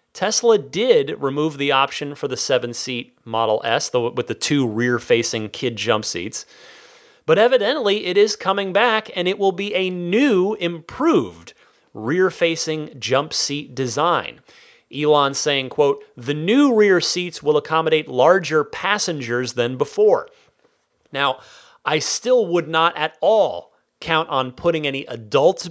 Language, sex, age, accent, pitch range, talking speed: English, male, 30-49, American, 130-205 Hz, 140 wpm